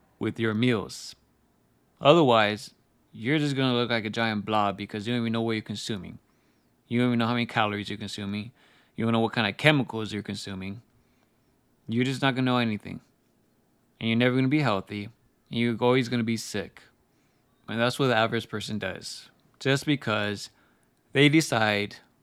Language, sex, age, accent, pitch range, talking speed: English, male, 20-39, American, 105-130 Hz, 190 wpm